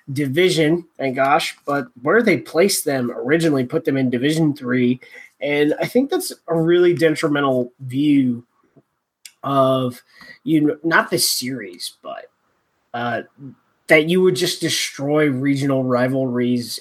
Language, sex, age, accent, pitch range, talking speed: English, male, 20-39, American, 130-175 Hz, 130 wpm